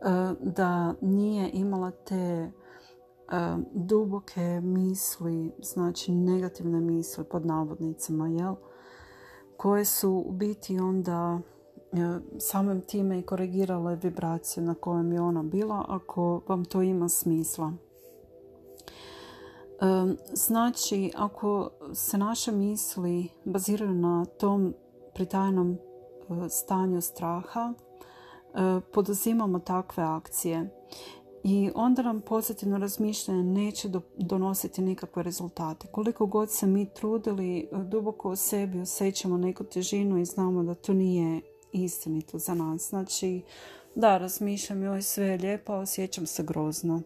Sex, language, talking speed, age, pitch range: female, Croatian, 105 wpm, 40-59, 170-200 Hz